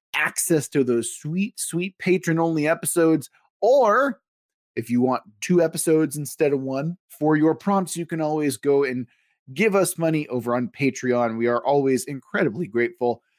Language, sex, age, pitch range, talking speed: English, male, 30-49, 135-190 Hz, 160 wpm